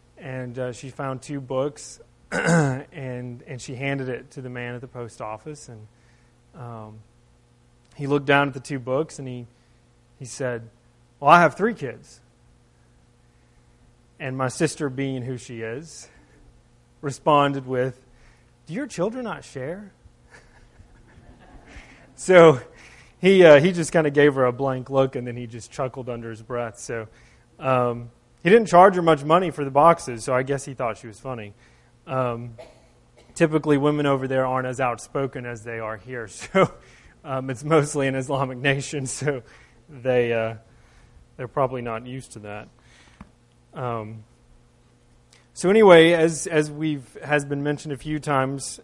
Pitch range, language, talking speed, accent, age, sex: 120-145 Hz, English, 160 wpm, American, 30-49, male